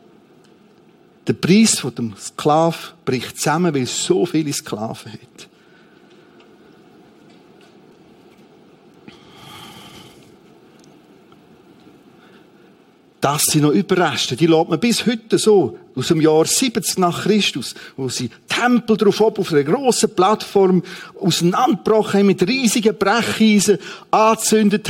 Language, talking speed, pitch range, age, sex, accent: German, 100 wpm, 155-210 Hz, 50-69, male, Austrian